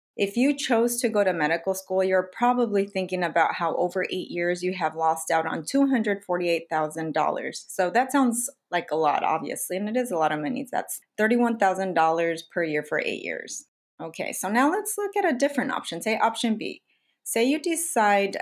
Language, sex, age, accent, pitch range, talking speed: English, female, 30-49, American, 170-235 Hz, 210 wpm